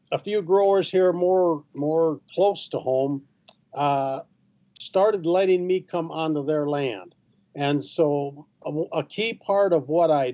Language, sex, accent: English, male, American